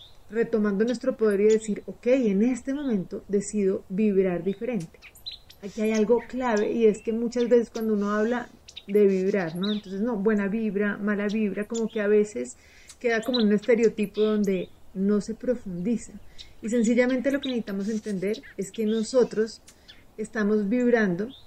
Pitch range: 200-230 Hz